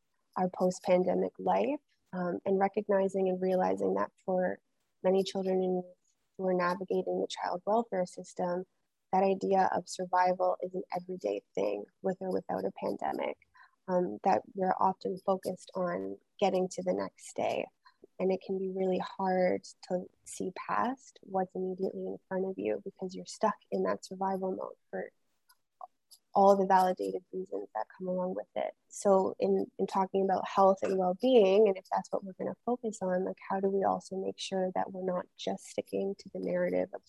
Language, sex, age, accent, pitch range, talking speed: English, female, 20-39, American, 180-195 Hz, 175 wpm